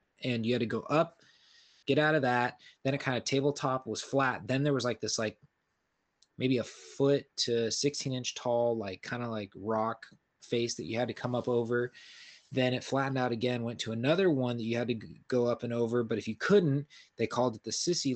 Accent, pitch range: American, 115-135 Hz